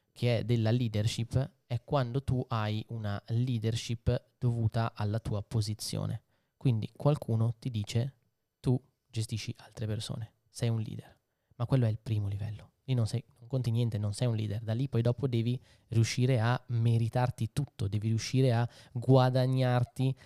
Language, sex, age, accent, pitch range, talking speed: Italian, male, 20-39, native, 110-130 Hz, 155 wpm